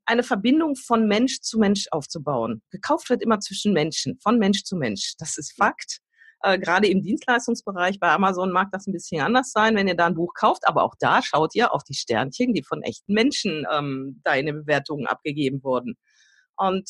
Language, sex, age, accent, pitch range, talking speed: German, female, 40-59, German, 185-245 Hz, 200 wpm